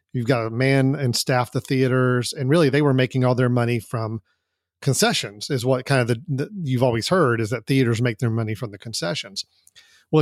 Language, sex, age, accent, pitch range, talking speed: English, male, 40-59, American, 120-140 Hz, 215 wpm